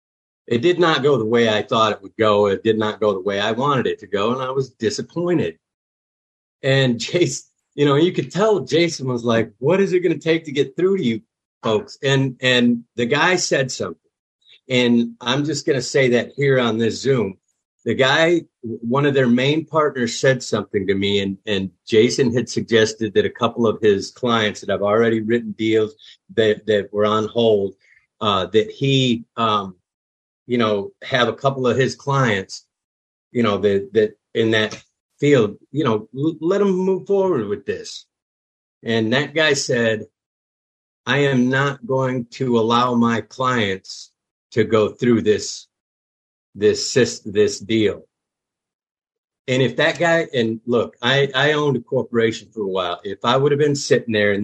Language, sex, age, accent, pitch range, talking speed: English, male, 50-69, American, 110-145 Hz, 185 wpm